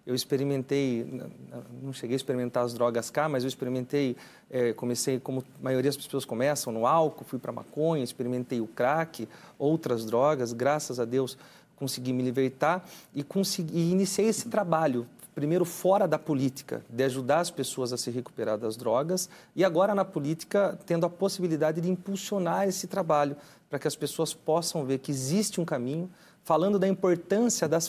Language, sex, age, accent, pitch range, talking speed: Portuguese, male, 40-59, Brazilian, 135-180 Hz, 170 wpm